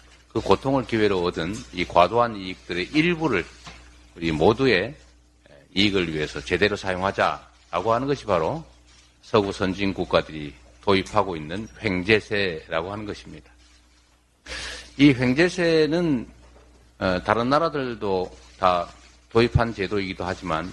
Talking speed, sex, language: 95 wpm, male, English